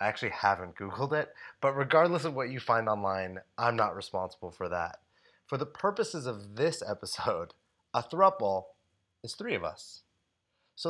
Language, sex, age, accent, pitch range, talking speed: English, male, 30-49, American, 95-135 Hz, 165 wpm